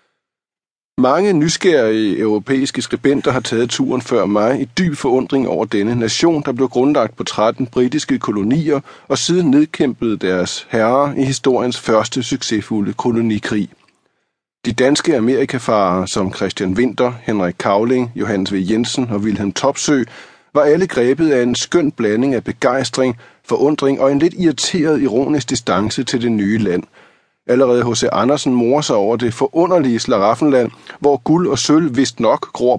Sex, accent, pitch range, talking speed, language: male, native, 115-145 Hz, 150 wpm, Danish